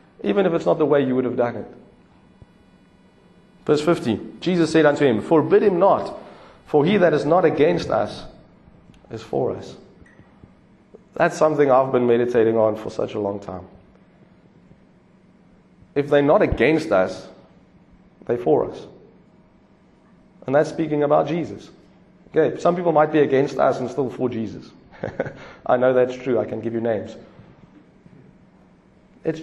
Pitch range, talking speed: 125-160 Hz, 155 wpm